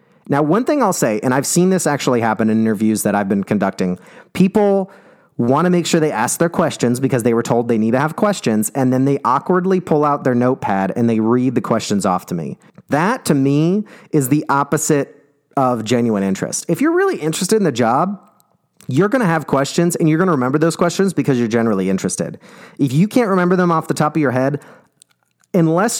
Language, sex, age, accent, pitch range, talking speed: English, male, 30-49, American, 115-160 Hz, 220 wpm